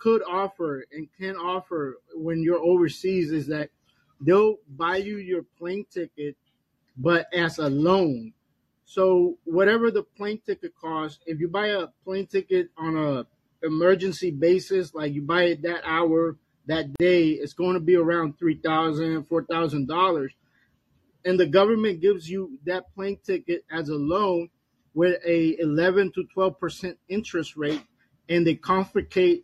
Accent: American